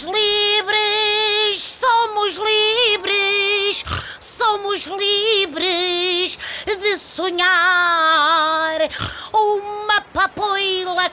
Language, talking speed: Portuguese, 55 wpm